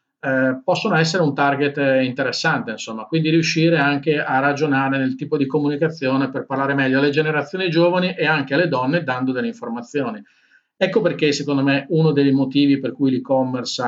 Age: 40-59